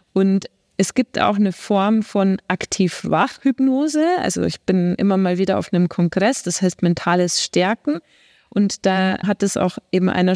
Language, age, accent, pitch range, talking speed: German, 30-49, German, 185-220 Hz, 160 wpm